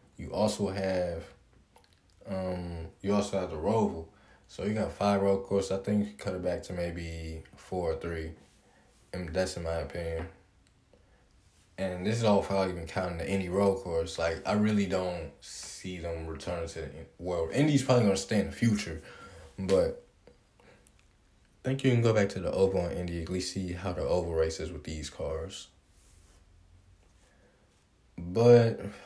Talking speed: 175 wpm